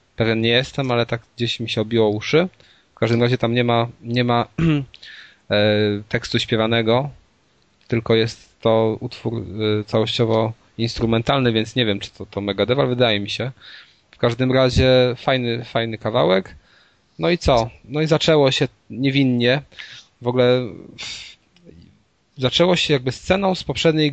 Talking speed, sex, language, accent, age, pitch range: 145 wpm, male, Polish, native, 20-39, 110-125 Hz